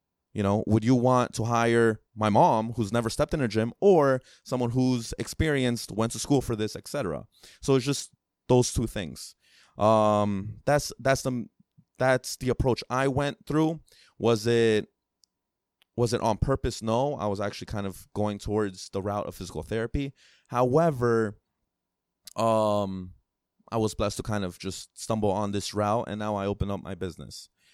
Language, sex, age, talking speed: English, male, 20-39, 175 wpm